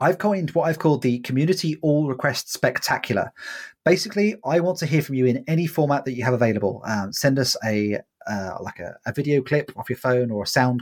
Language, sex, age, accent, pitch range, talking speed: English, male, 30-49, British, 125-160 Hz, 220 wpm